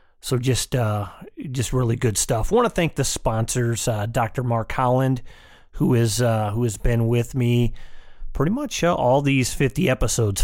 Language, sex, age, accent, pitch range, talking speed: English, male, 30-49, American, 110-130 Hz, 180 wpm